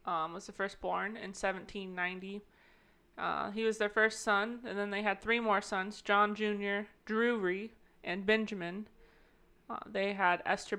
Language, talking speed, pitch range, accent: English, 160 wpm, 195-220 Hz, American